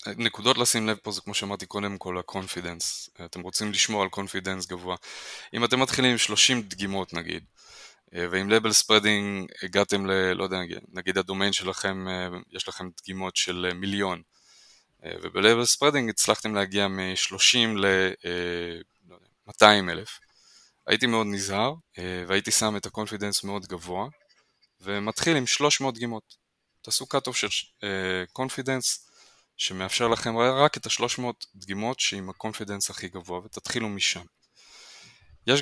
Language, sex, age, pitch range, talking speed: Hebrew, male, 20-39, 95-110 Hz, 130 wpm